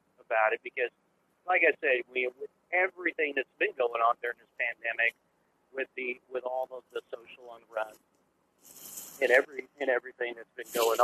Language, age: English, 50-69